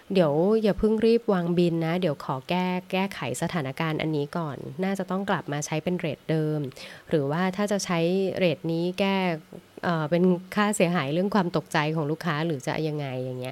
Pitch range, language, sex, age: 150-180 Hz, Thai, female, 20-39